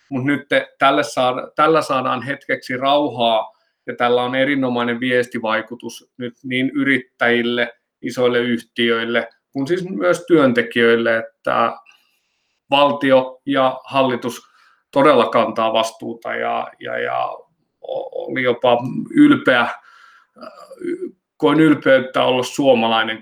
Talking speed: 100 wpm